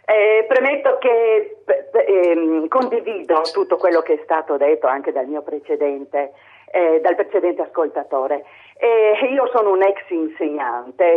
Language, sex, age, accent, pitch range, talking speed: Italian, female, 40-59, native, 160-240 Hz, 135 wpm